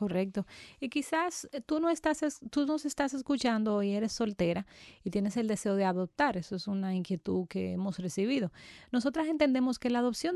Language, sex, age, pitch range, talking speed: Spanish, female, 30-49, 190-245 Hz, 180 wpm